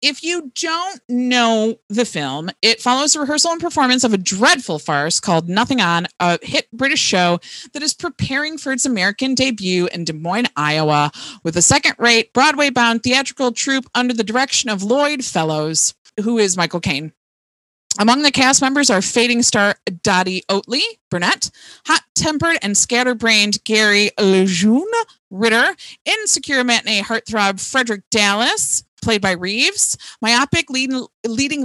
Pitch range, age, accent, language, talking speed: 190-265 Hz, 30-49, American, English, 145 wpm